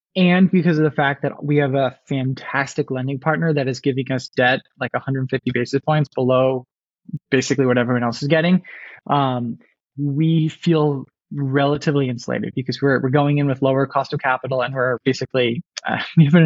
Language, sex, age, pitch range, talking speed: English, male, 20-39, 130-150 Hz, 180 wpm